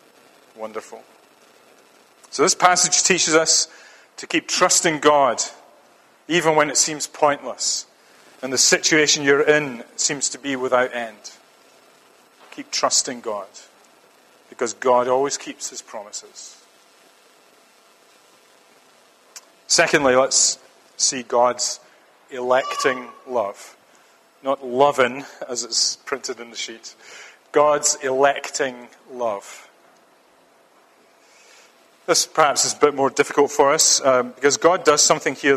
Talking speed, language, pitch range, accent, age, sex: 110 wpm, English, 130-165 Hz, British, 40-59, male